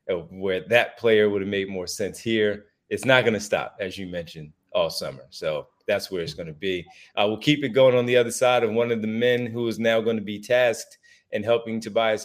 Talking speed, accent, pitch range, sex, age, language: 245 wpm, American, 105-140 Hz, male, 30-49, English